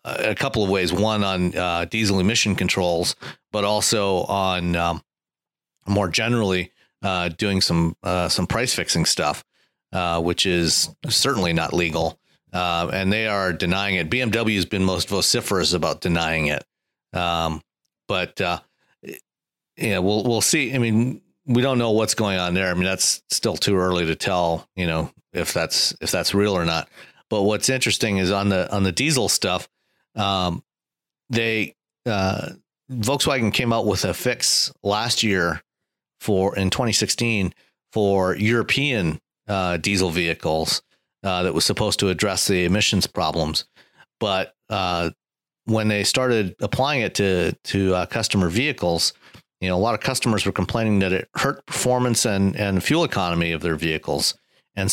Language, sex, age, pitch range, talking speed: English, male, 40-59, 90-110 Hz, 160 wpm